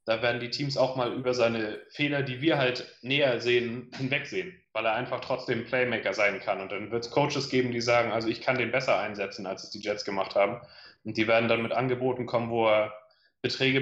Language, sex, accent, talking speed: German, male, German, 225 wpm